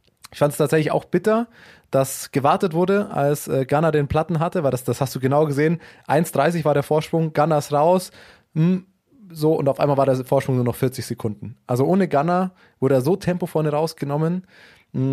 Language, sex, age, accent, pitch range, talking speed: German, male, 20-39, German, 130-165 Hz, 200 wpm